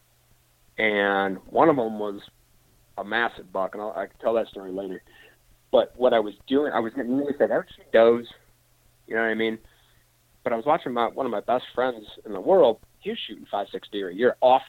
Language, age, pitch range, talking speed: English, 30-49, 100-120 Hz, 220 wpm